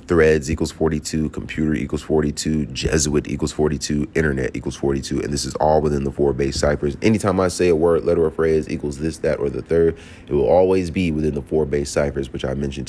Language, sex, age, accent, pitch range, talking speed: English, male, 30-49, American, 70-80 Hz, 220 wpm